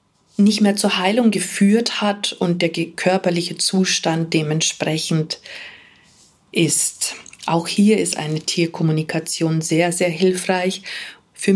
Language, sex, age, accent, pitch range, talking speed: German, female, 40-59, German, 170-200 Hz, 110 wpm